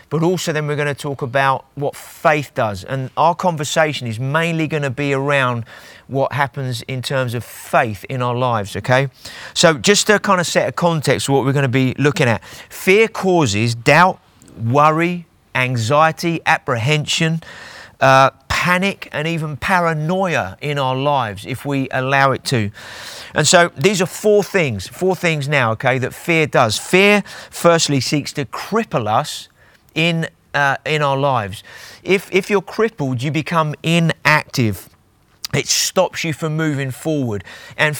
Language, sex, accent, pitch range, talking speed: English, male, British, 130-170 Hz, 160 wpm